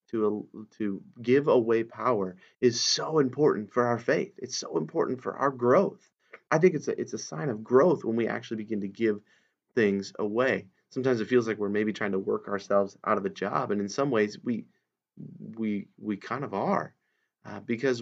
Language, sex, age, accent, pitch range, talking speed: English, male, 30-49, American, 100-115 Hz, 200 wpm